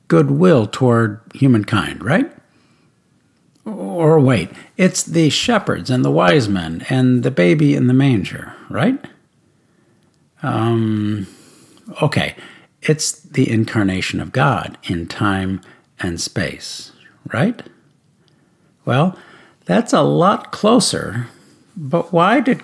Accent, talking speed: American, 110 wpm